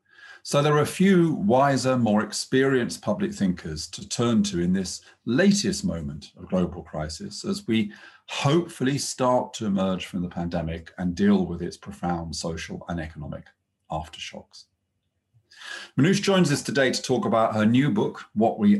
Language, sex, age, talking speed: English, male, 40-59, 160 wpm